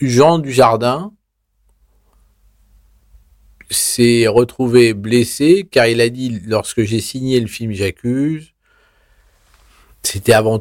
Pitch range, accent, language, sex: 95-125 Hz, French, French, male